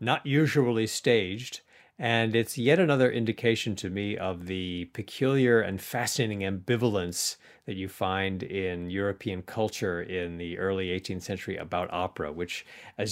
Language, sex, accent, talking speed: English, male, American, 140 wpm